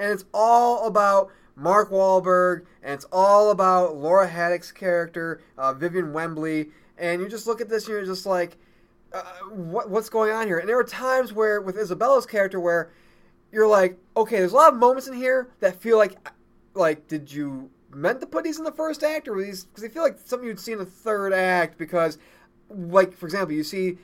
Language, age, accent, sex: English, 20-39, American, male